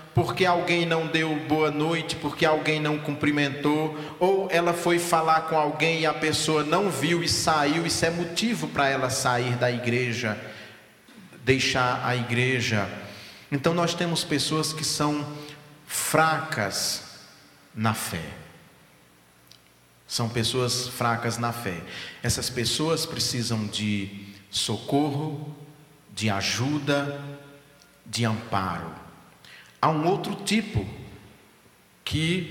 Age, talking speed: 40-59, 115 wpm